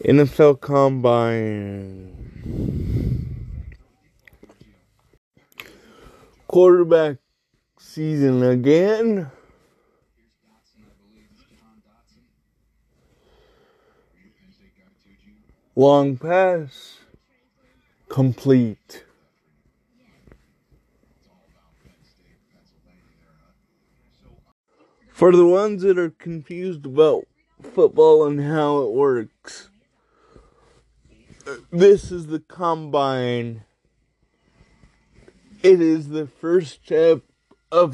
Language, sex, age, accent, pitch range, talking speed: English, male, 20-39, American, 130-180 Hz, 45 wpm